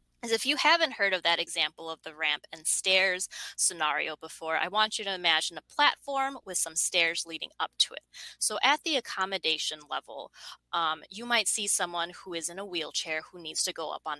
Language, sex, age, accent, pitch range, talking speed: English, female, 20-39, American, 165-220 Hz, 210 wpm